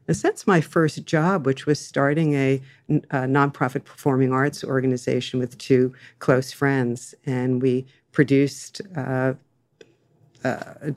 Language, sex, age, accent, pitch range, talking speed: English, female, 50-69, American, 130-145 Hz, 120 wpm